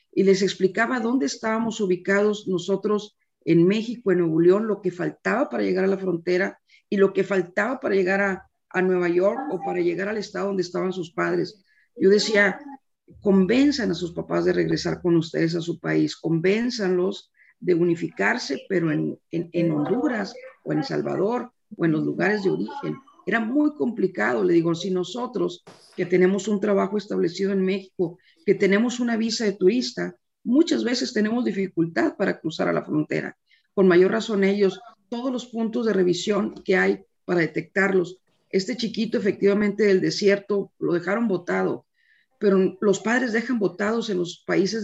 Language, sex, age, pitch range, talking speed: Spanish, female, 50-69, 180-215 Hz, 170 wpm